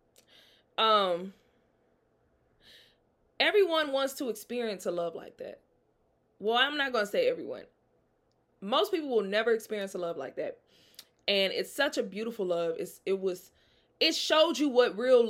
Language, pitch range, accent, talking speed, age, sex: English, 200-310 Hz, American, 150 wpm, 20-39, female